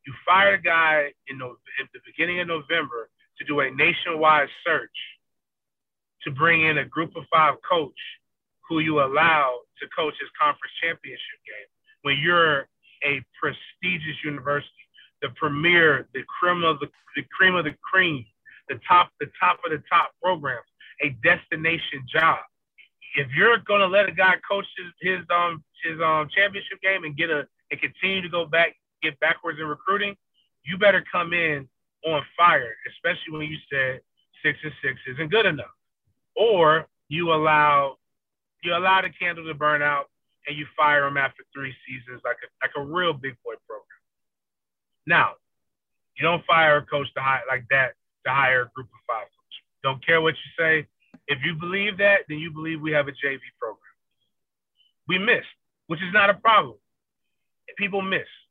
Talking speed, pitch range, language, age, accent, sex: 175 wpm, 145-185 Hz, English, 30-49, American, male